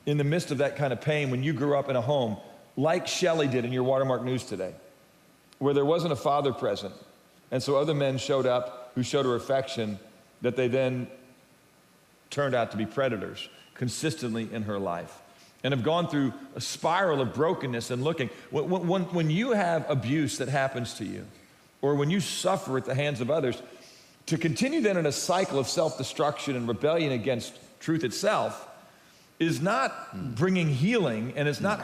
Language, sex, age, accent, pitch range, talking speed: English, male, 40-59, American, 130-170 Hz, 185 wpm